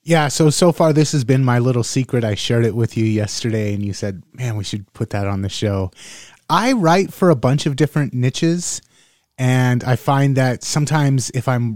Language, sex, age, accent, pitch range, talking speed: English, male, 30-49, American, 110-140 Hz, 215 wpm